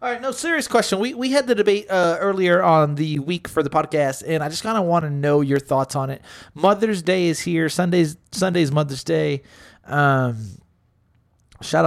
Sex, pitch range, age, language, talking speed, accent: male, 125-170 Hz, 30-49, English, 200 wpm, American